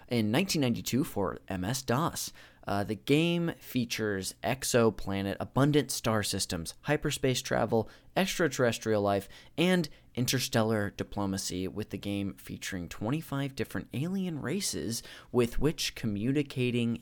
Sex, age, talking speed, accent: male, 20-39, 105 wpm, American